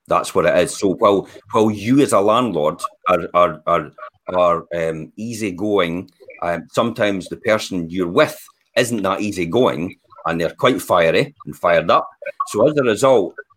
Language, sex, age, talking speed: English, male, 40-59, 175 wpm